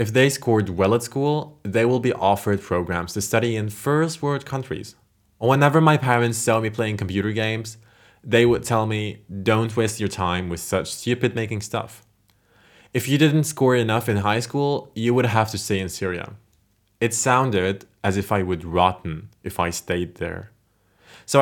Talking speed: 180 wpm